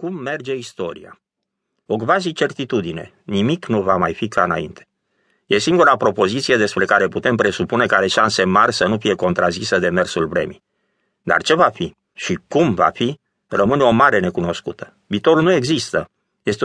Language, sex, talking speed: Romanian, male, 170 wpm